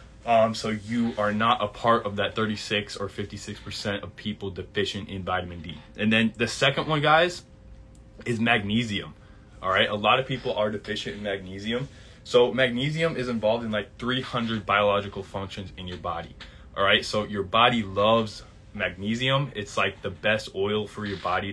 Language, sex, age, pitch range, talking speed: English, male, 20-39, 100-115 Hz, 180 wpm